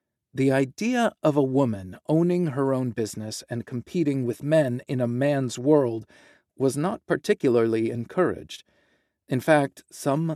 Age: 40-59